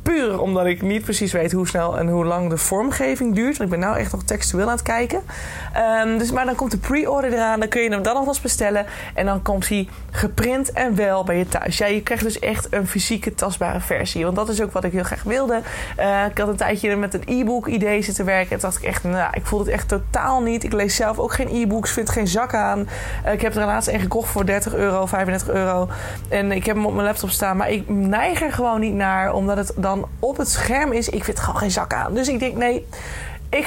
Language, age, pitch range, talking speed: Dutch, 20-39, 185-230 Hz, 260 wpm